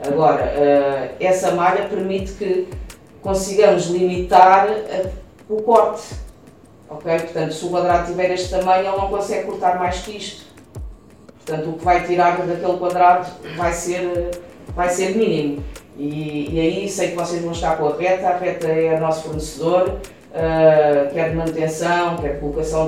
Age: 20-39